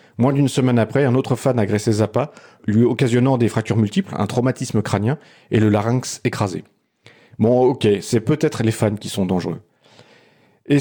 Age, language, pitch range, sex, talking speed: 40-59, French, 105-135 Hz, male, 180 wpm